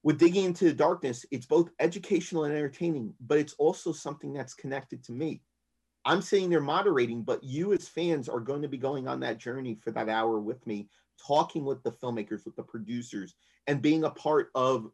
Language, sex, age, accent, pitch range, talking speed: English, male, 30-49, American, 120-170 Hz, 205 wpm